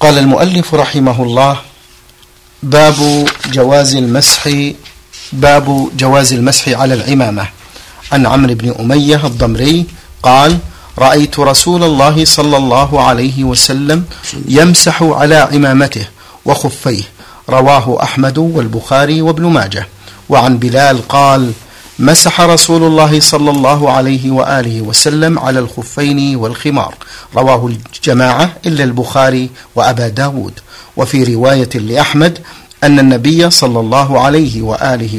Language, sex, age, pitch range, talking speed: Arabic, male, 50-69, 125-150 Hz, 105 wpm